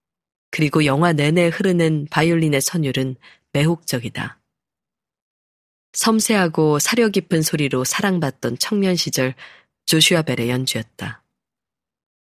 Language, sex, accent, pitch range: Korean, female, native, 130-175 Hz